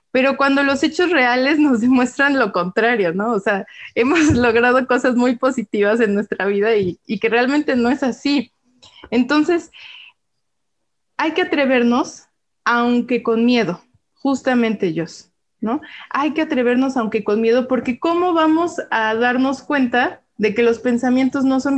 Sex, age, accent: female, 20-39, Mexican